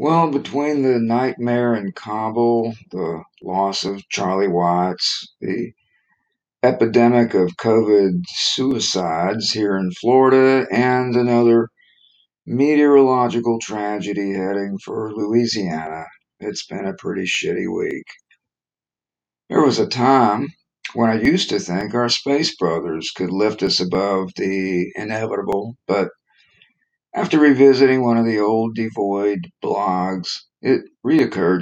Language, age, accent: English, 50-69, American